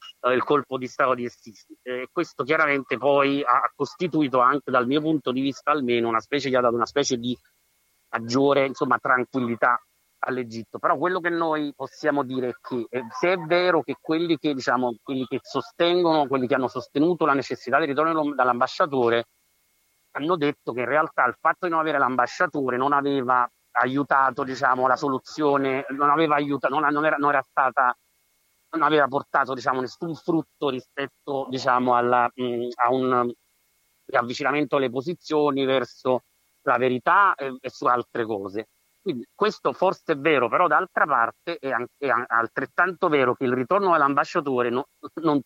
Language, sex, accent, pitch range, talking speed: Italian, male, native, 125-150 Hz, 165 wpm